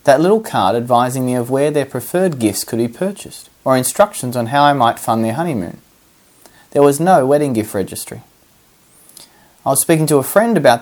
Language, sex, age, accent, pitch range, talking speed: English, male, 30-49, Australian, 115-145 Hz, 195 wpm